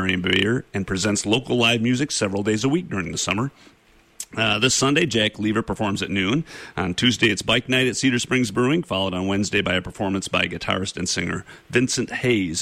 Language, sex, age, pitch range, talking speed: English, male, 40-59, 95-110 Hz, 195 wpm